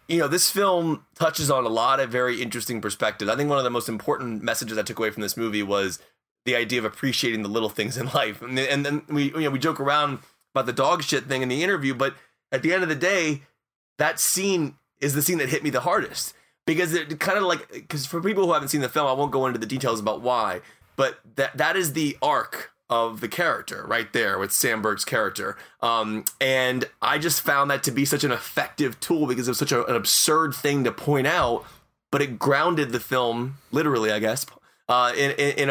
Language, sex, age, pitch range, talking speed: English, male, 30-49, 115-145 Hz, 235 wpm